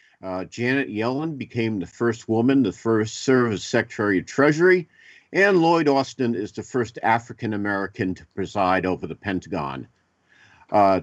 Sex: male